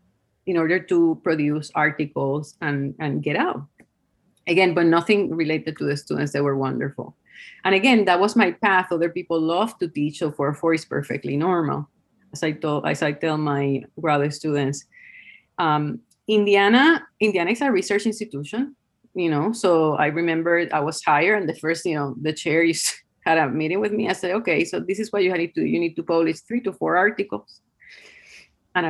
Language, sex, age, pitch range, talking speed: English, female, 30-49, 150-200 Hz, 190 wpm